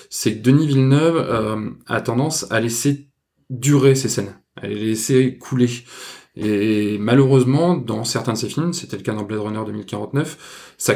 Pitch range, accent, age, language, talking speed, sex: 110-140 Hz, French, 20-39, French, 170 wpm, male